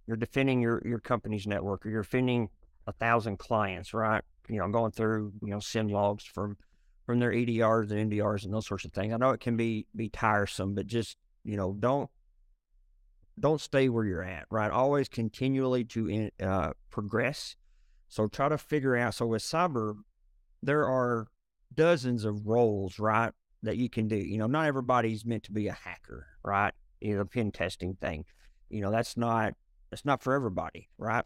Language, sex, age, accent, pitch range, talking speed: English, male, 50-69, American, 100-120 Hz, 190 wpm